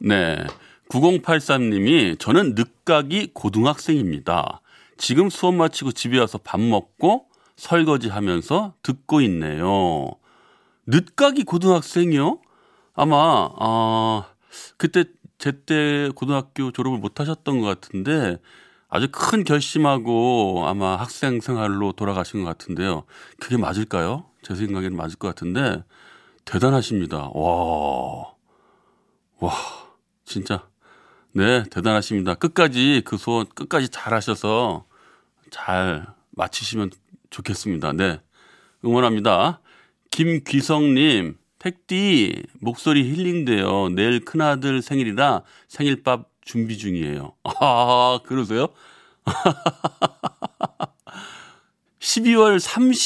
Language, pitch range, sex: Korean, 105-165 Hz, male